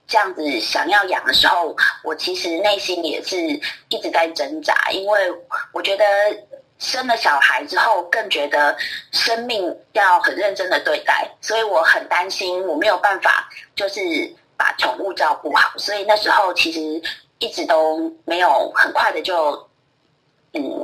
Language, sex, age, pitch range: Chinese, female, 20-39, 190-310 Hz